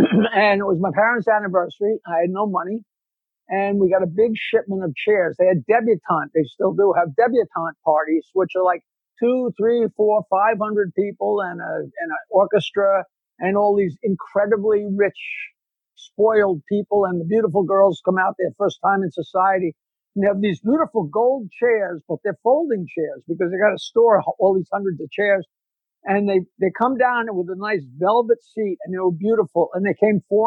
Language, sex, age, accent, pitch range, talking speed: English, male, 60-79, American, 185-220 Hz, 195 wpm